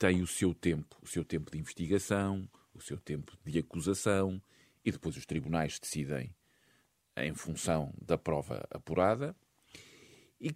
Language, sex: Portuguese, male